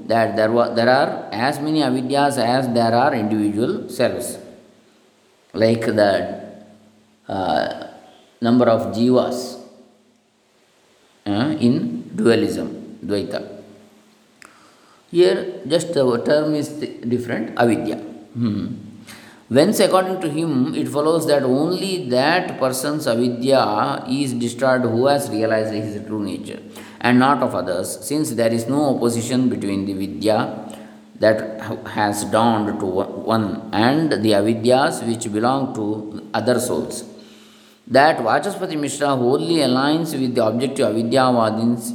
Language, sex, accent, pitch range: English, male, Indian, 110-135 Hz